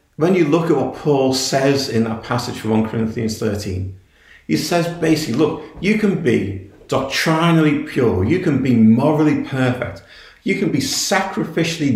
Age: 40-59